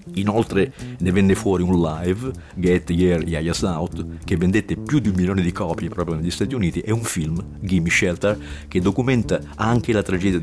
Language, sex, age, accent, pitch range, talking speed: Italian, male, 50-69, native, 85-105 Hz, 185 wpm